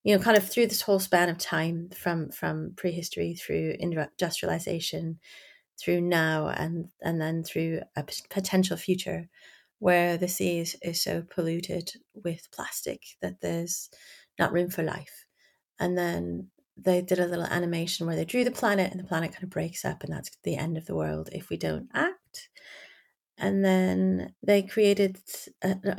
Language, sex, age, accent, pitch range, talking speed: English, female, 30-49, British, 165-210 Hz, 175 wpm